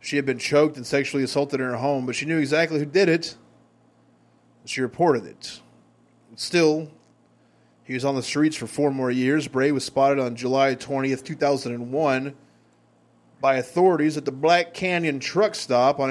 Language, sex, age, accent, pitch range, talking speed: English, male, 20-39, American, 130-155 Hz, 185 wpm